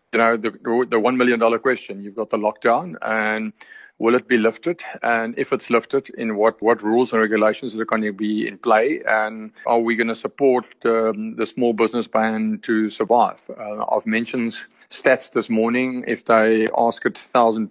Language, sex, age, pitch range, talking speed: English, male, 50-69, 110-125 Hz, 195 wpm